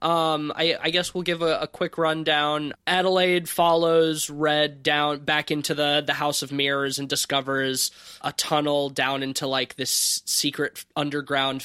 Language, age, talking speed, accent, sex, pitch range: English, 20-39, 160 wpm, American, male, 130-150 Hz